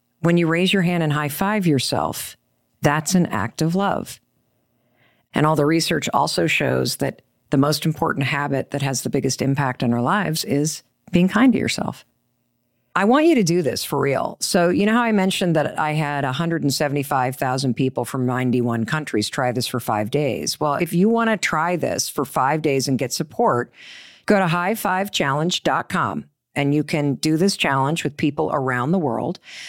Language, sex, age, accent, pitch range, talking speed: English, female, 50-69, American, 135-180 Hz, 185 wpm